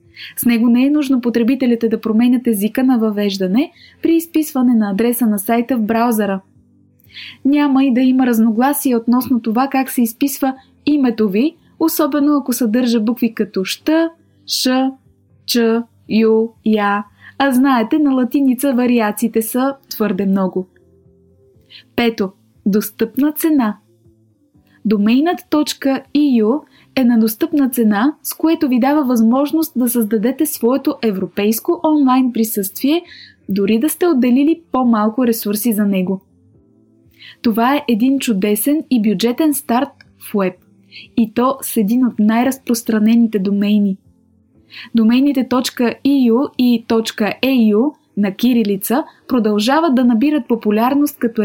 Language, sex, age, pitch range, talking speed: English, female, 20-39, 215-270 Hz, 120 wpm